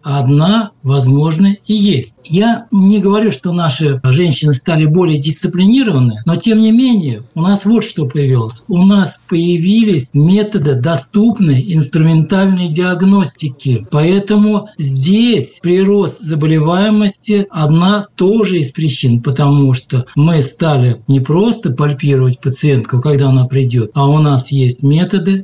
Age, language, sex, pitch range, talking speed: 60-79, Russian, male, 140-195 Hz, 125 wpm